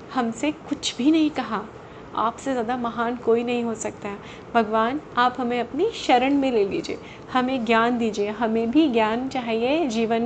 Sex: female